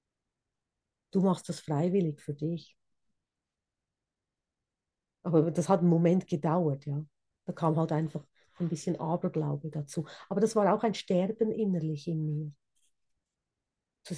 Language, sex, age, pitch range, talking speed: German, female, 40-59, 155-200 Hz, 130 wpm